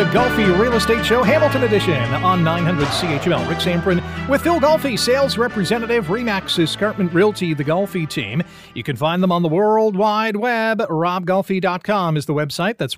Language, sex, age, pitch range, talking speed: English, male, 40-59, 150-205 Hz, 170 wpm